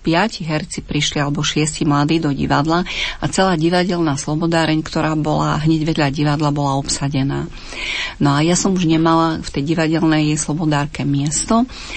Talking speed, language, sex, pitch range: 150 wpm, Slovak, female, 140-170 Hz